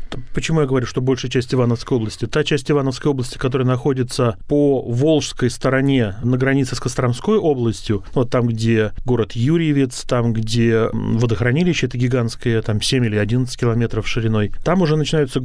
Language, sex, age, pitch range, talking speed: Russian, male, 30-49, 115-140 Hz, 160 wpm